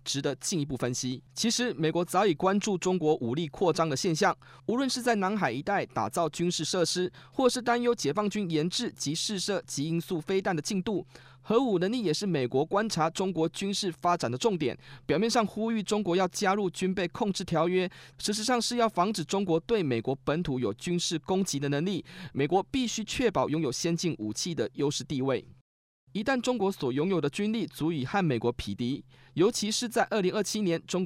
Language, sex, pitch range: Chinese, male, 155-205 Hz